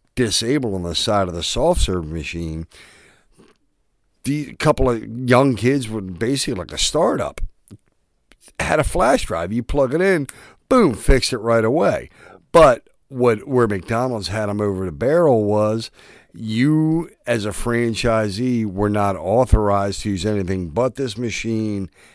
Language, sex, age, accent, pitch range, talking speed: English, male, 50-69, American, 90-120 Hz, 150 wpm